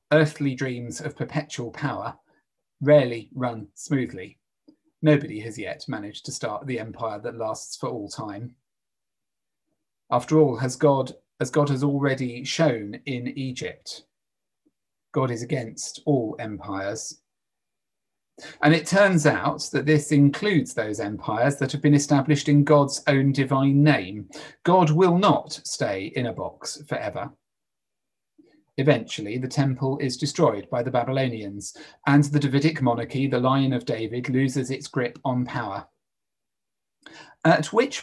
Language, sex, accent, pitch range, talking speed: English, male, British, 125-155 Hz, 135 wpm